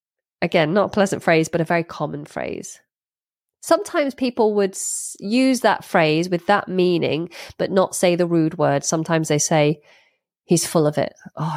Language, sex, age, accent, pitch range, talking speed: English, female, 20-39, British, 160-225 Hz, 170 wpm